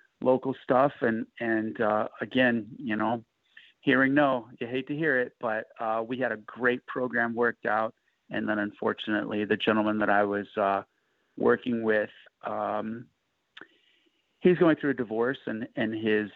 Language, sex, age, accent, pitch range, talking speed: English, male, 40-59, American, 105-125 Hz, 160 wpm